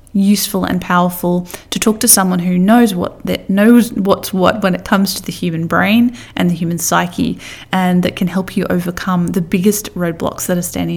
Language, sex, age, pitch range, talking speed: English, female, 20-39, 170-230 Hz, 200 wpm